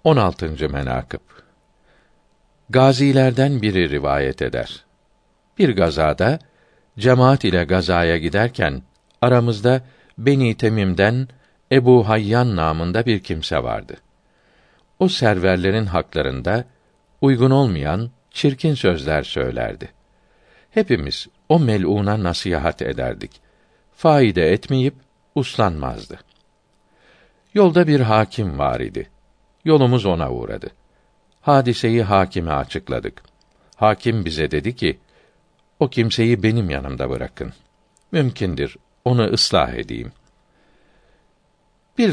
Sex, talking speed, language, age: male, 90 wpm, Turkish, 60-79